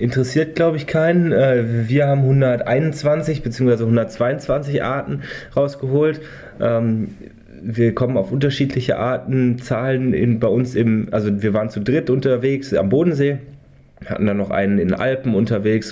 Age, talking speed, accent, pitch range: 20-39, 140 wpm, German, 100-125 Hz